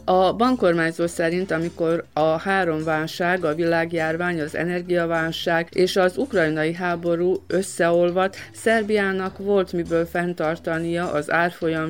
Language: Hungarian